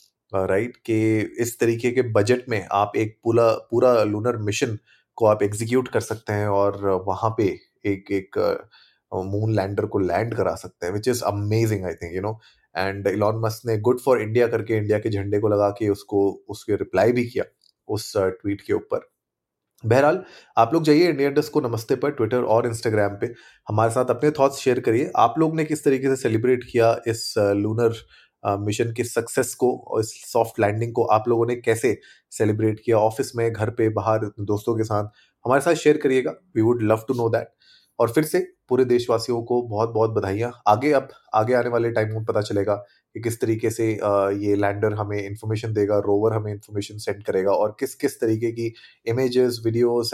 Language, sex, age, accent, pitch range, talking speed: Hindi, male, 30-49, native, 105-120 Hz, 195 wpm